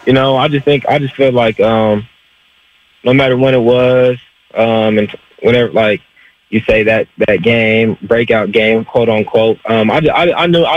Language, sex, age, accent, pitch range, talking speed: English, male, 20-39, American, 110-125 Hz, 195 wpm